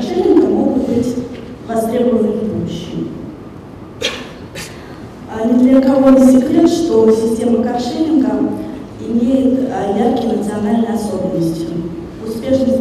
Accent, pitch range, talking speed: native, 225-270 Hz, 95 wpm